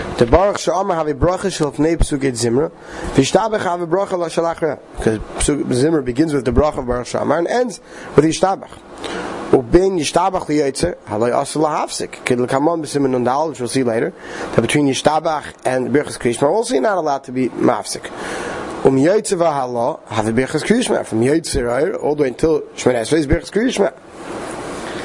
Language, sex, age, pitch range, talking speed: English, male, 30-49, 130-175 Hz, 175 wpm